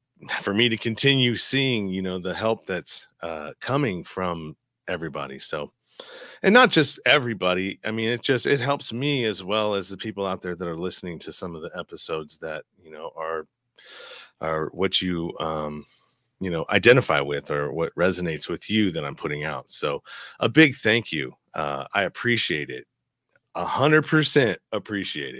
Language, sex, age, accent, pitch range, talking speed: English, male, 30-49, American, 85-115 Hz, 175 wpm